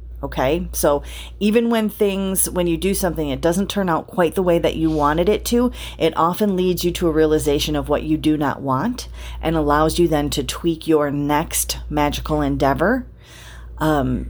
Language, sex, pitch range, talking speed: English, female, 120-175 Hz, 190 wpm